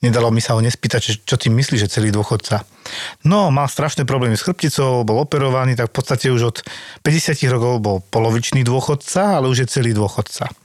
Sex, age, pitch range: male, 40-59, 120-145 Hz